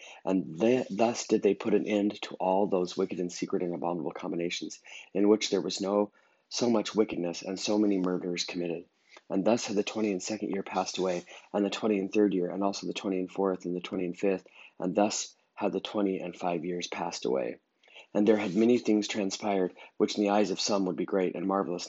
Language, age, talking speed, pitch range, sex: English, 30-49, 230 wpm, 90-105 Hz, male